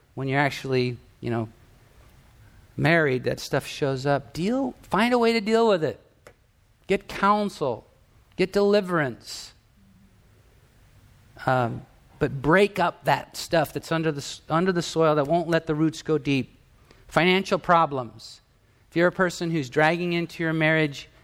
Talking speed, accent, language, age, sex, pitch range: 145 wpm, American, English, 50-69, male, 120-165 Hz